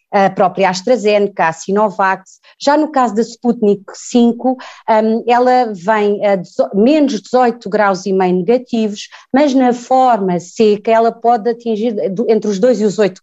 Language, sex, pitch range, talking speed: Portuguese, female, 190-235 Hz, 150 wpm